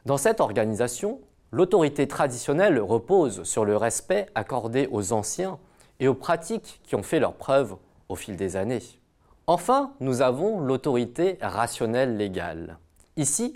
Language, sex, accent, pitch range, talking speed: French, male, French, 110-160 Hz, 135 wpm